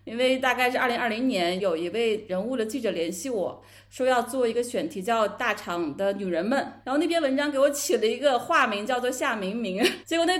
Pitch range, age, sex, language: 210-275 Hz, 30-49, female, Chinese